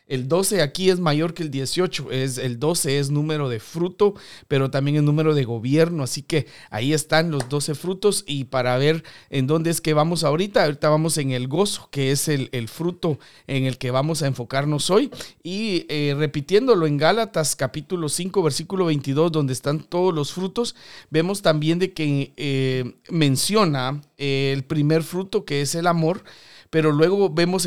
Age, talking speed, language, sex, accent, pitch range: 40-59, 180 wpm, Spanish, male, Mexican, 140-180 Hz